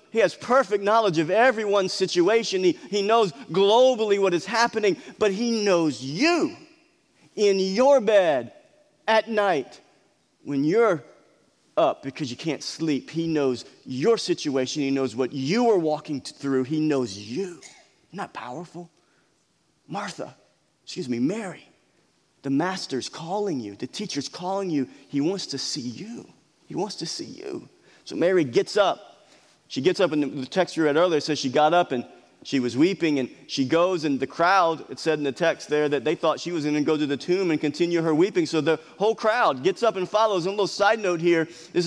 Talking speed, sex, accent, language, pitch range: 190 wpm, male, American, English, 150-205 Hz